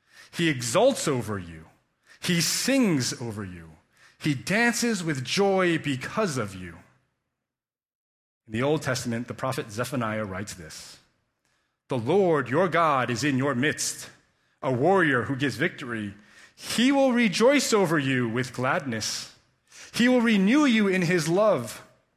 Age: 30-49